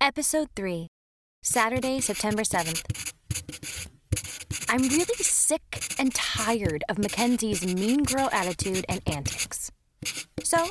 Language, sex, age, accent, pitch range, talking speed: English, female, 20-39, American, 195-270 Hz, 100 wpm